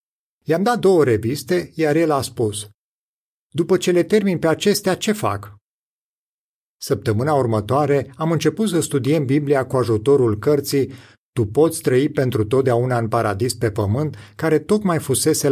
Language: Romanian